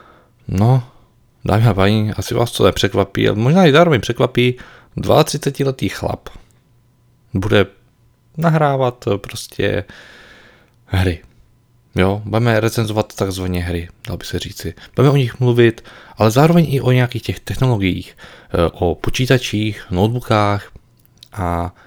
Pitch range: 100-125 Hz